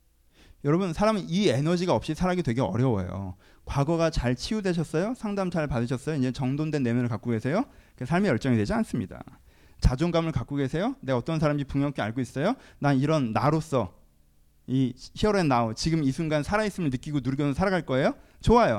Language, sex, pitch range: Korean, male, 120-185 Hz